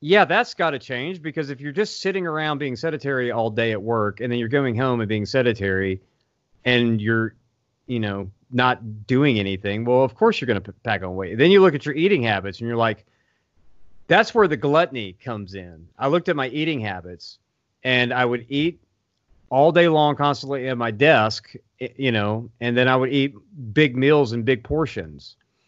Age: 40-59